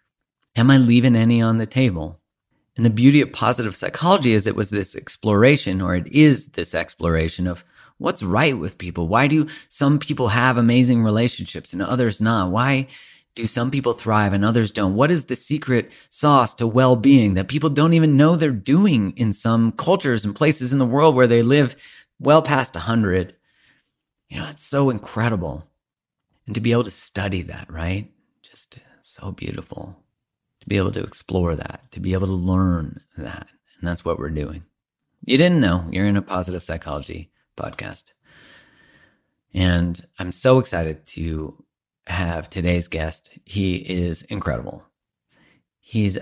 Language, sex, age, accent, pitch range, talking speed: English, male, 30-49, American, 90-125 Hz, 165 wpm